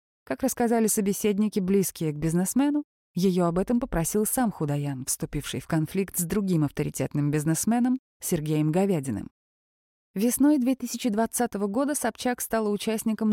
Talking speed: 120 wpm